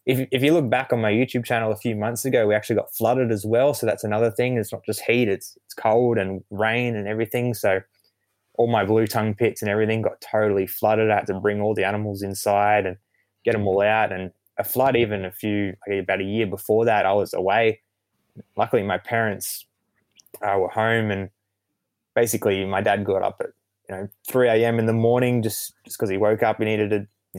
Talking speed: 225 wpm